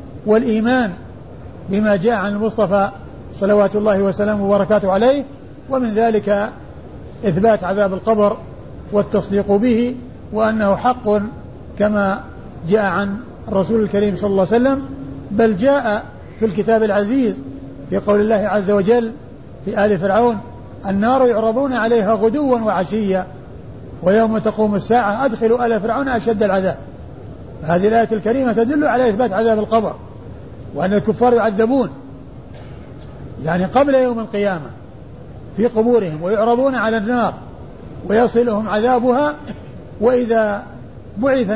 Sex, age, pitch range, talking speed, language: male, 50-69, 195-230 Hz, 115 wpm, Arabic